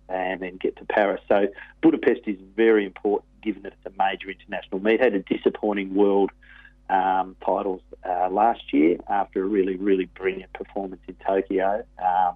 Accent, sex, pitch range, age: Australian, male, 95-115 Hz, 40-59